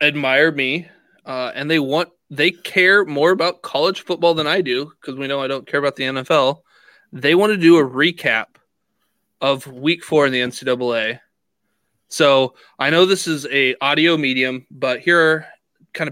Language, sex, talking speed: English, male, 175 wpm